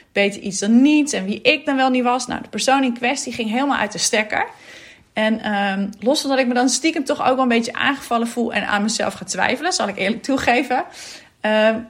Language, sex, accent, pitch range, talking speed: Dutch, female, Dutch, 210-260 Hz, 230 wpm